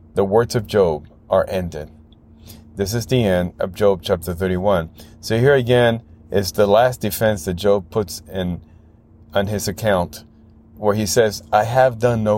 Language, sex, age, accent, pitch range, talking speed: English, male, 30-49, American, 85-110 Hz, 170 wpm